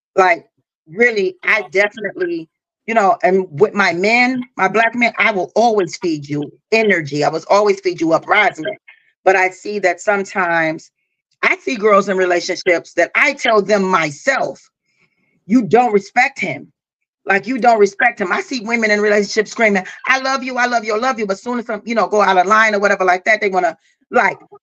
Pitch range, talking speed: 190-245 Hz, 200 wpm